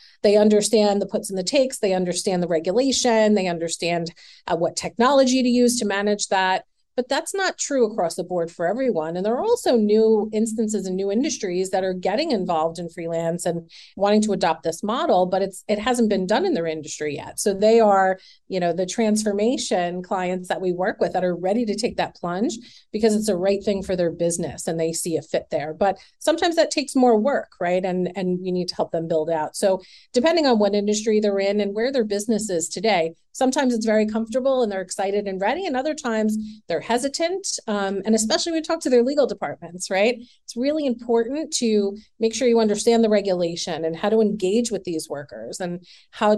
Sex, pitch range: female, 180-230 Hz